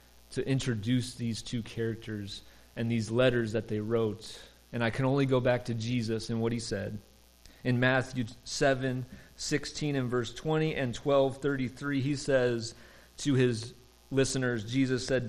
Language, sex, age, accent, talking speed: English, male, 30-49, American, 150 wpm